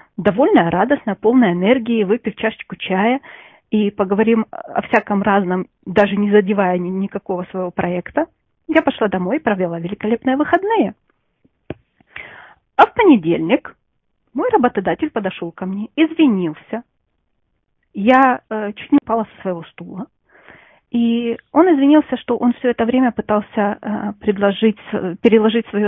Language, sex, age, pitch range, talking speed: English, female, 30-49, 190-250 Hz, 125 wpm